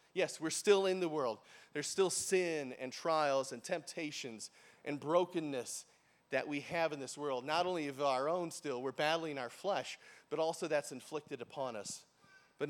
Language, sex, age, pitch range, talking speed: English, male, 30-49, 135-165 Hz, 180 wpm